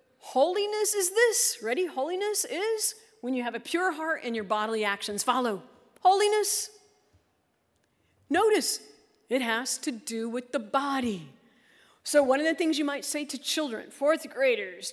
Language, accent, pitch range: English, American, 235-335 Hz